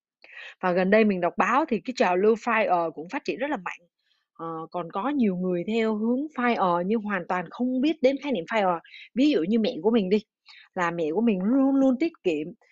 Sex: female